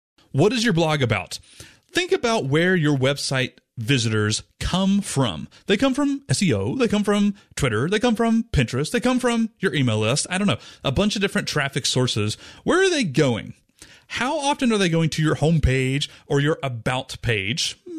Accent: American